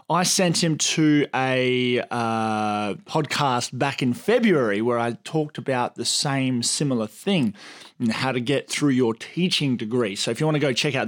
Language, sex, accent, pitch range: English, male, Australian, 125-155 Hz